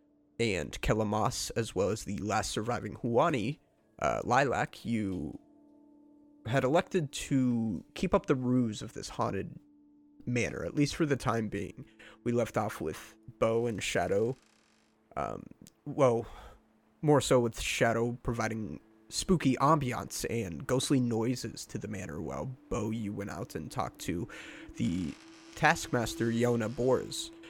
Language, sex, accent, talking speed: English, male, American, 135 wpm